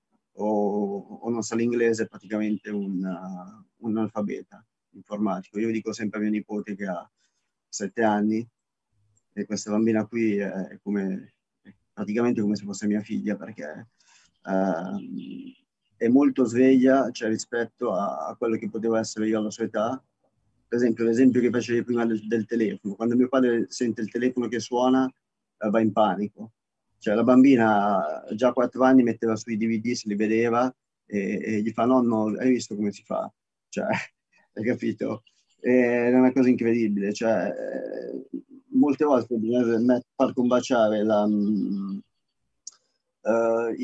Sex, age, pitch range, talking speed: male, 30-49, 105-125 Hz, 155 wpm